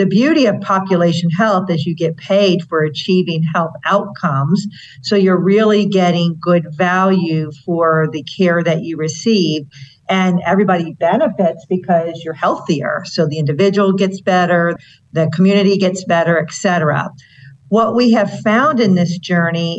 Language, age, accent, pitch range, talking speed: English, 50-69, American, 165-195 Hz, 150 wpm